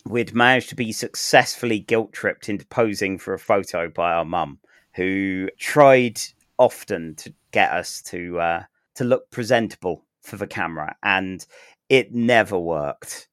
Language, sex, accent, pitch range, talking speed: English, male, British, 105-130 Hz, 150 wpm